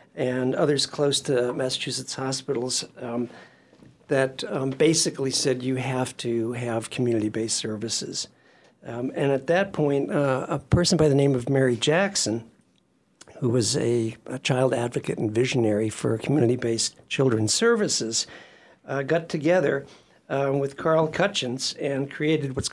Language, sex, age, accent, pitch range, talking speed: English, male, 60-79, American, 115-140 Hz, 140 wpm